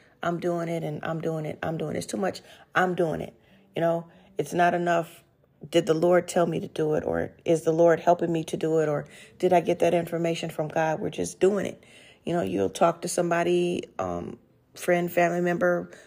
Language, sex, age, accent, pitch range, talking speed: English, female, 30-49, American, 165-185 Hz, 225 wpm